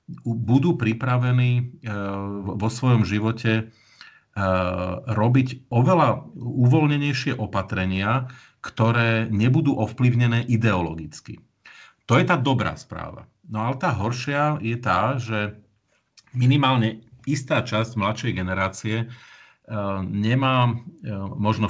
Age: 40-59